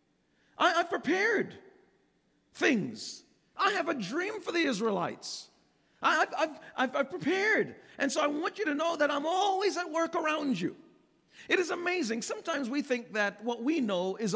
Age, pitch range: 40-59, 215-315 Hz